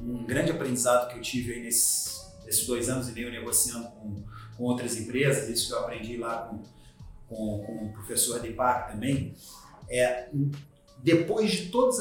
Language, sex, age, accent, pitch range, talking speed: Portuguese, male, 40-59, Brazilian, 120-170 Hz, 175 wpm